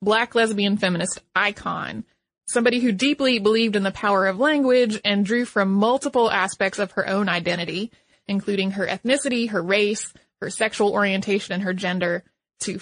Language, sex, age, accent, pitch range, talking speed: English, female, 20-39, American, 195-245 Hz, 160 wpm